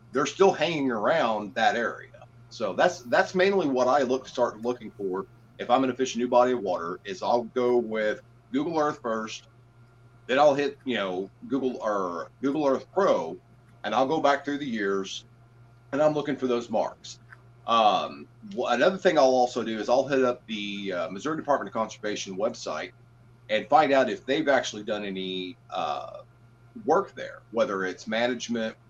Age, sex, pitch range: 40-59, male, 110-125 Hz